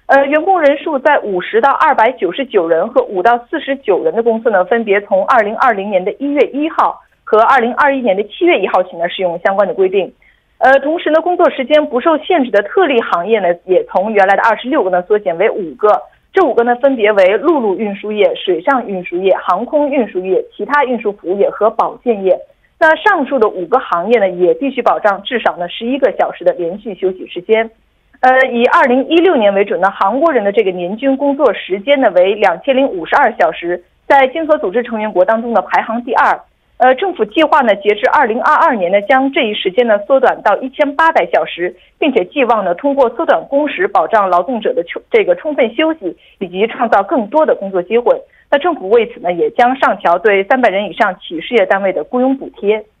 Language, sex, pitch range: Korean, female, 205-305 Hz